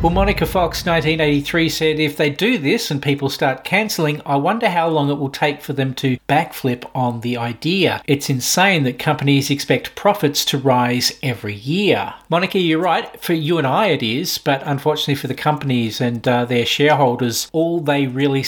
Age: 40-59